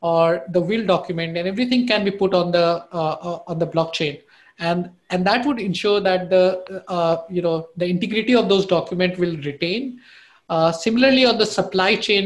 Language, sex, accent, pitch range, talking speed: English, male, Indian, 170-195 Hz, 185 wpm